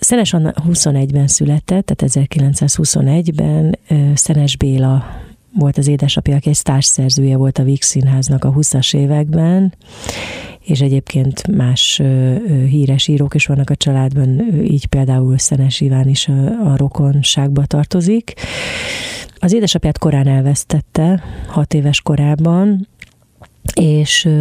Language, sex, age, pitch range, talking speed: Hungarian, female, 40-59, 135-155 Hz, 110 wpm